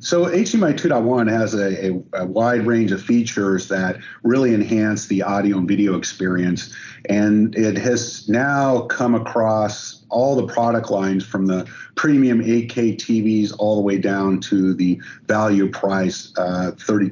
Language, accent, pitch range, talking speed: English, American, 100-120 Hz, 145 wpm